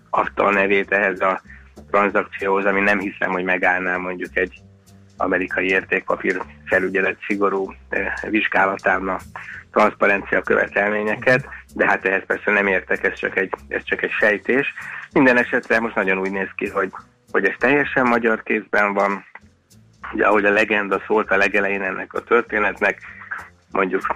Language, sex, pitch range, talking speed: Hungarian, male, 95-105 Hz, 145 wpm